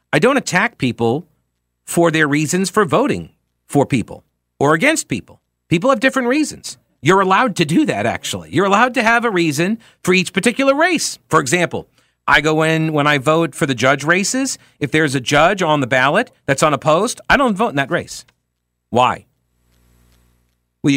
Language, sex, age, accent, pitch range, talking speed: English, male, 50-69, American, 125-195 Hz, 180 wpm